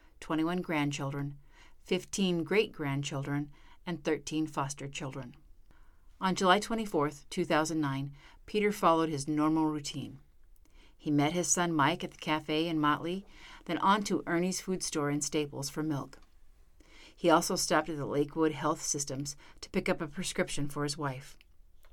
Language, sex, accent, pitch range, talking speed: English, female, American, 140-170 Hz, 145 wpm